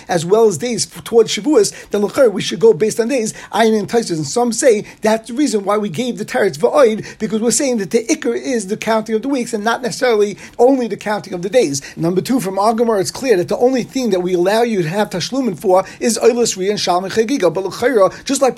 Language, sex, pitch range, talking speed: English, male, 195-240 Hz, 245 wpm